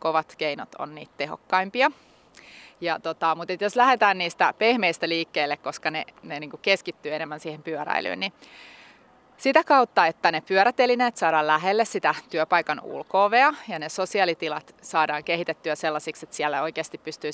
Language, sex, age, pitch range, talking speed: Finnish, female, 30-49, 160-220 Hz, 140 wpm